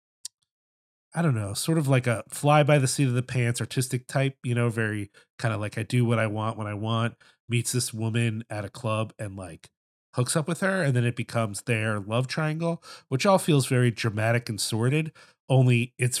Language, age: English, 30-49